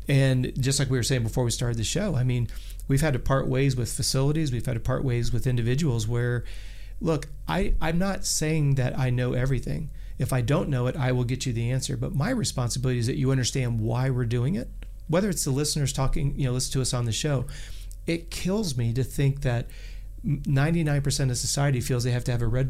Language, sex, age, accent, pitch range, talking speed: English, male, 40-59, American, 115-135 Hz, 235 wpm